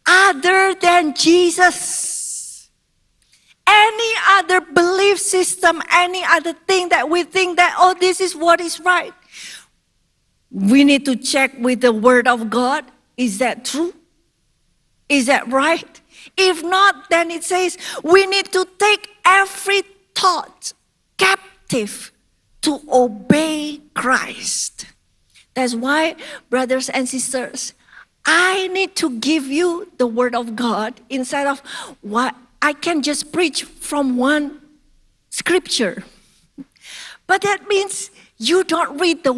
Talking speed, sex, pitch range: 125 wpm, female, 270-365 Hz